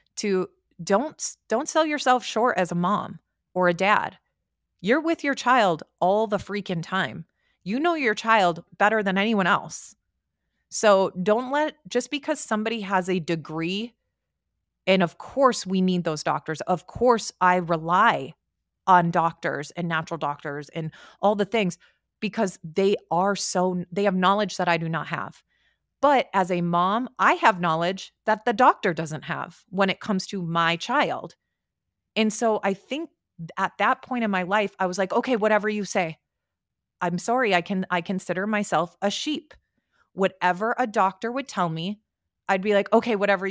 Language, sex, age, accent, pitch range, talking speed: English, female, 30-49, American, 175-220 Hz, 170 wpm